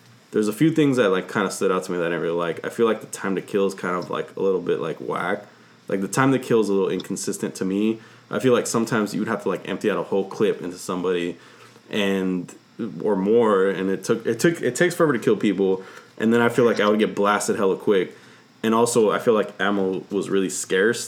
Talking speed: 275 wpm